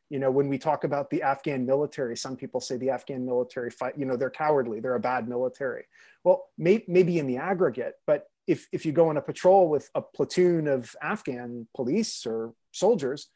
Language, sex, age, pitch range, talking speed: English, male, 30-49, 130-190 Hz, 200 wpm